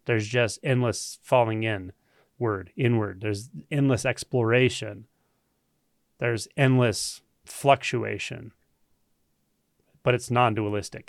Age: 30-49